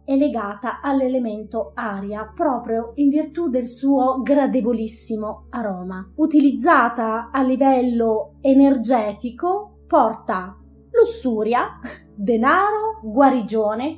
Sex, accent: female, native